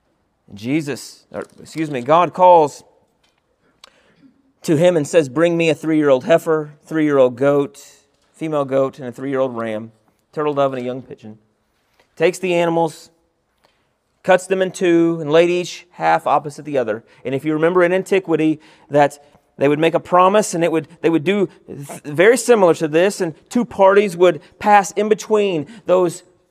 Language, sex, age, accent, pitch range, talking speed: English, male, 30-49, American, 150-185 Hz, 165 wpm